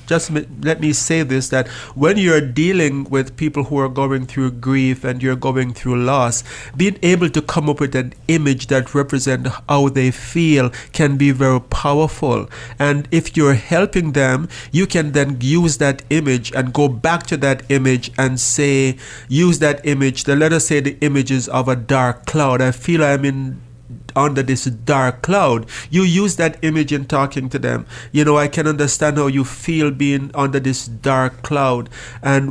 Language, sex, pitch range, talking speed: English, male, 130-150 Hz, 185 wpm